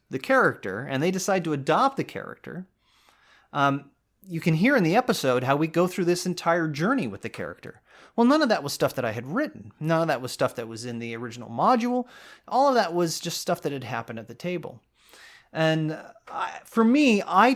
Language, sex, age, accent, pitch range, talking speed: English, male, 30-49, American, 120-180 Hz, 215 wpm